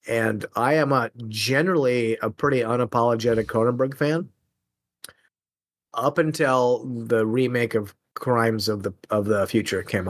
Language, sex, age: English, male, 30-49